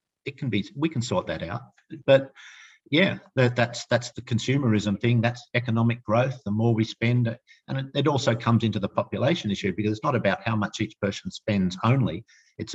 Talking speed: 195 wpm